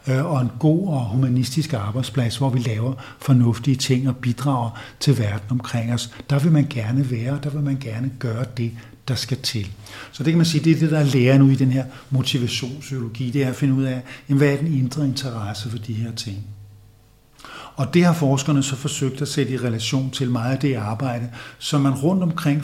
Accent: native